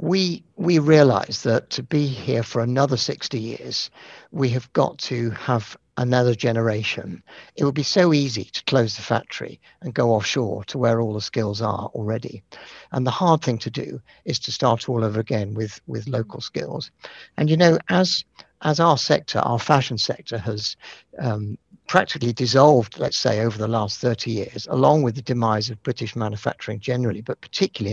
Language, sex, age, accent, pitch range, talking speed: English, male, 50-69, British, 115-145 Hz, 180 wpm